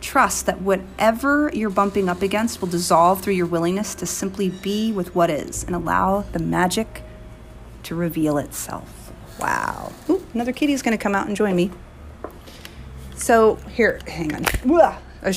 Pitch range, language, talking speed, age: 170-205 Hz, English, 165 wpm, 30-49